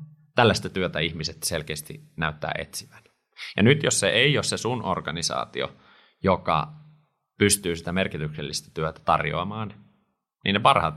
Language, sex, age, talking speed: Finnish, male, 30-49, 130 wpm